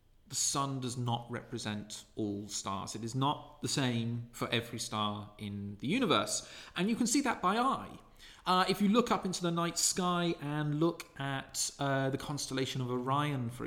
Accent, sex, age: British, male, 40-59